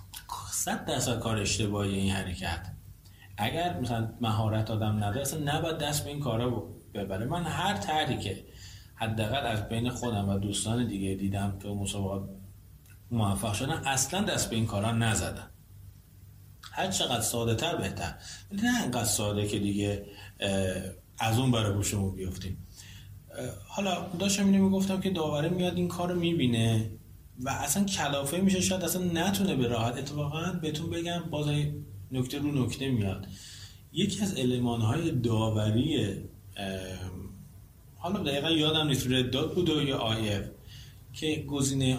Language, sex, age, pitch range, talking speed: Persian, male, 30-49, 100-150 Hz, 135 wpm